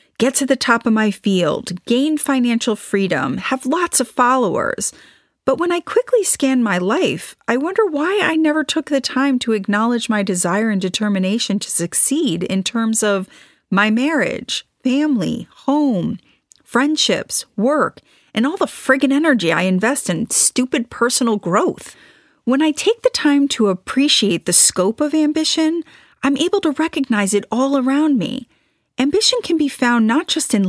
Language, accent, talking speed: English, American, 160 wpm